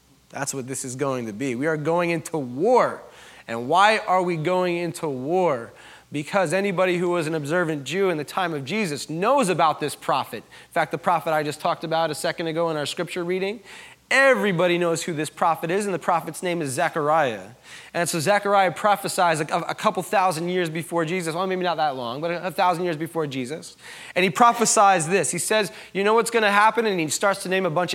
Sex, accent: male, American